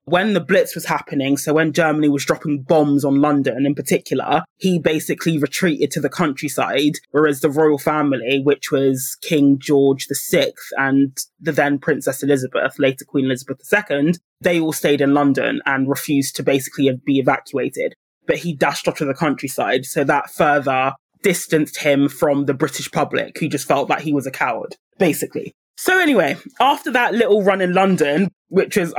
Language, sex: English, male